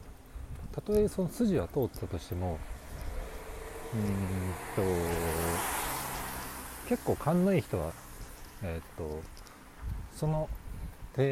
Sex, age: male, 40-59